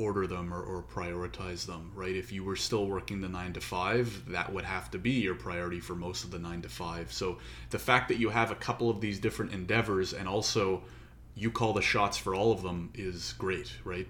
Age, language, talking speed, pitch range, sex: 30-49, English, 235 wpm, 95-120 Hz, male